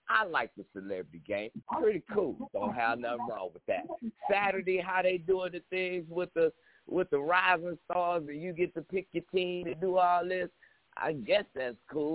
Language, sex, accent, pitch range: English, male, American, 140-230 Hz